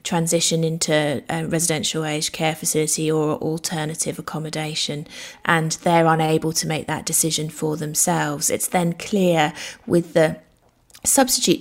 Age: 30-49